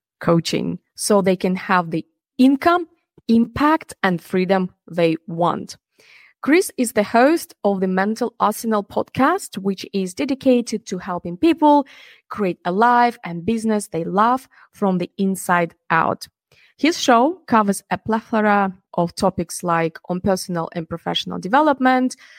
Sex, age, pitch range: female, 20-39, 180-245 Hz